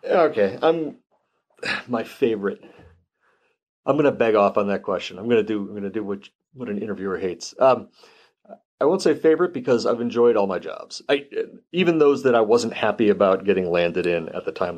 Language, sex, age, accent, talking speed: English, male, 40-59, American, 205 wpm